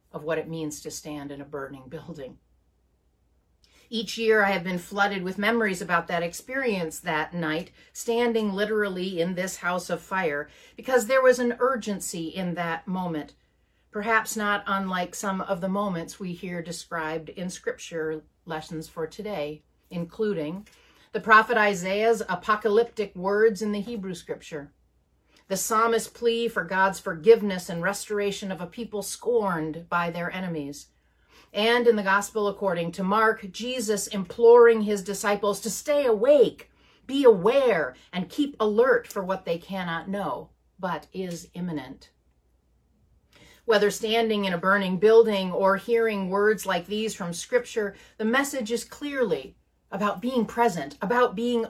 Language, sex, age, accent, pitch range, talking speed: English, female, 40-59, American, 175-225 Hz, 145 wpm